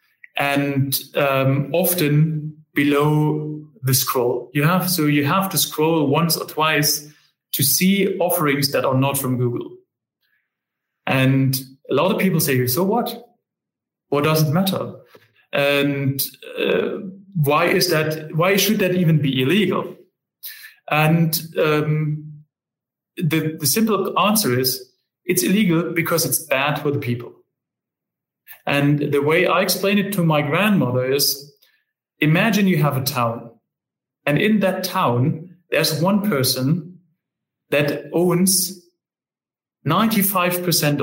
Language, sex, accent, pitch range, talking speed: Czech, male, German, 145-185 Hz, 125 wpm